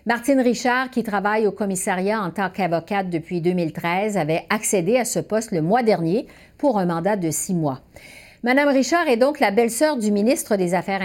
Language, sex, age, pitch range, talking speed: French, female, 50-69, 160-225 Hz, 190 wpm